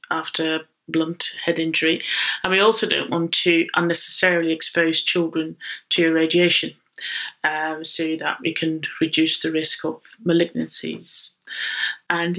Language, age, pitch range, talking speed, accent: English, 30-49, 160-200 Hz, 125 wpm, British